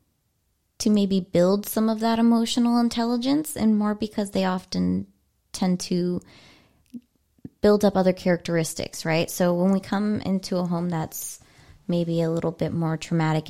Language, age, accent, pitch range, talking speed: English, 20-39, American, 160-190 Hz, 150 wpm